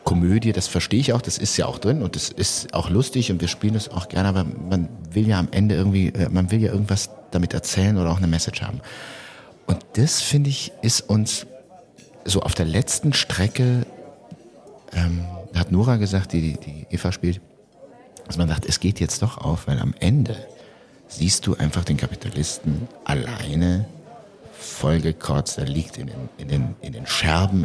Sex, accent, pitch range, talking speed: male, German, 90-120 Hz, 185 wpm